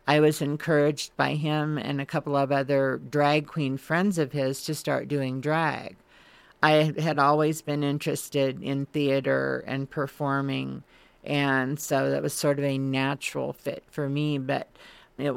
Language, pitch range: English, 135-145 Hz